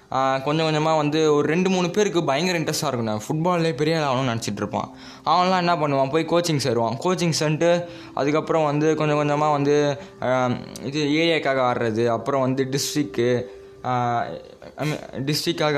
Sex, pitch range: male, 130-170 Hz